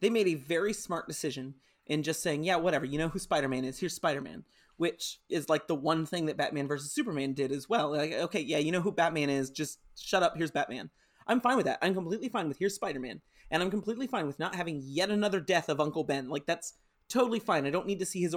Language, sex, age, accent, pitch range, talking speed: English, male, 30-49, American, 145-200 Hz, 250 wpm